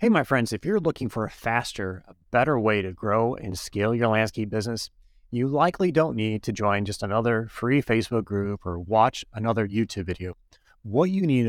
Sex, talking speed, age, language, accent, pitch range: male, 200 wpm, 30-49, English, American, 100-135 Hz